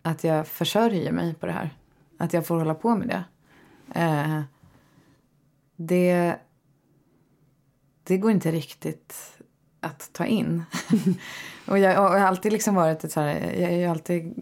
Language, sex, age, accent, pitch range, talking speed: Swedish, female, 20-39, native, 150-180 Hz, 155 wpm